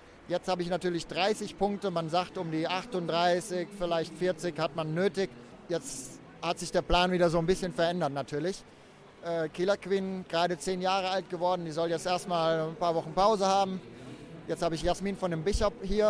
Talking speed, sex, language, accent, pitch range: 195 wpm, male, German, German, 170-195 Hz